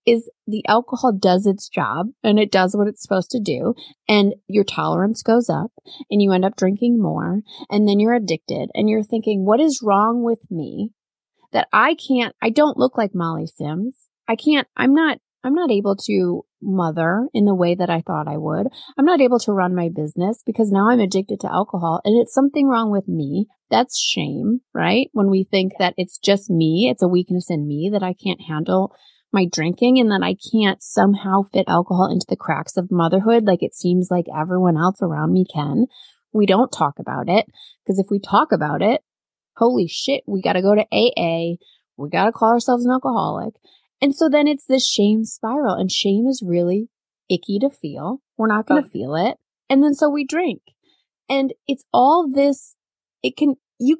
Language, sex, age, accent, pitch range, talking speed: English, female, 30-49, American, 185-245 Hz, 200 wpm